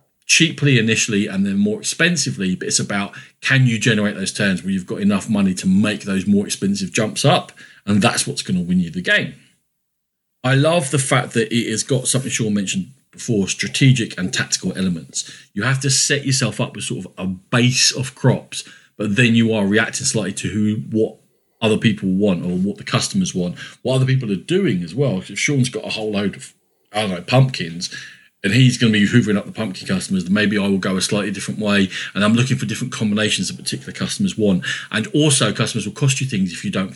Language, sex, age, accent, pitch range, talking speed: English, male, 40-59, British, 105-170 Hz, 220 wpm